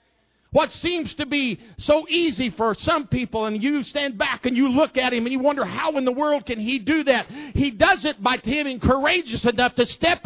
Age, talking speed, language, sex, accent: 50-69, 220 wpm, English, male, American